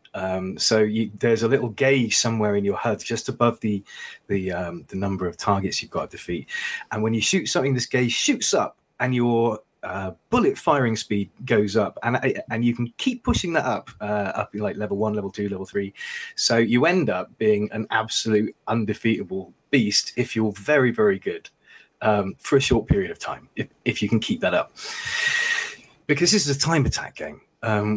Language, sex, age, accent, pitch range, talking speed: English, male, 20-39, British, 100-125 Hz, 205 wpm